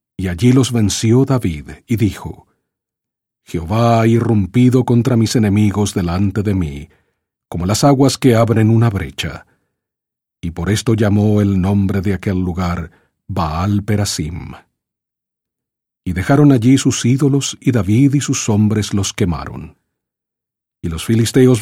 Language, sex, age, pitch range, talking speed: English, male, 40-59, 95-120 Hz, 135 wpm